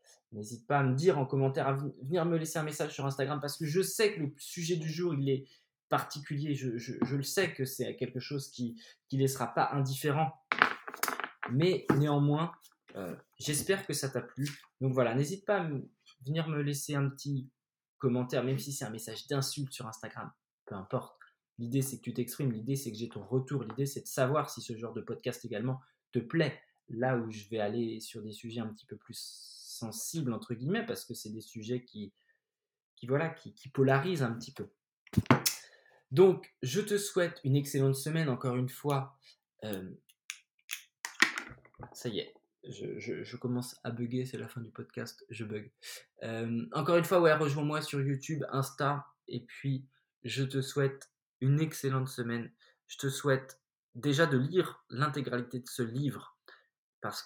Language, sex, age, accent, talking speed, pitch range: French, male, 20-39, French, 185 wpm, 120-145 Hz